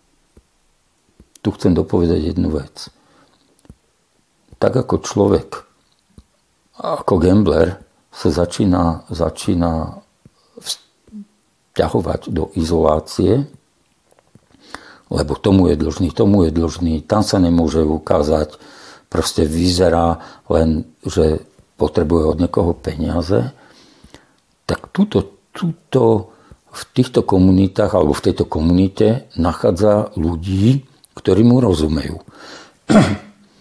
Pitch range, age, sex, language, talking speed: 80-100 Hz, 60-79, male, Slovak, 90 wpm